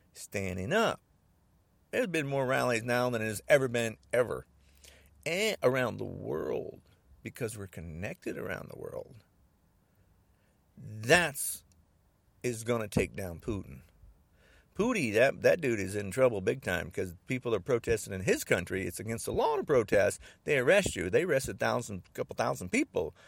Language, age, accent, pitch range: English, 50-69, American, 90-125 Hz